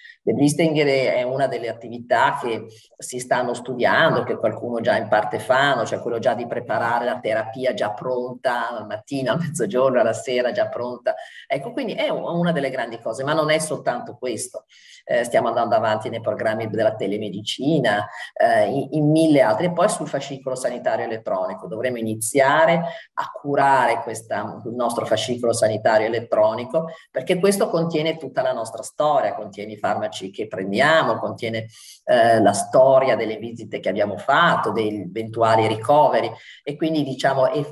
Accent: native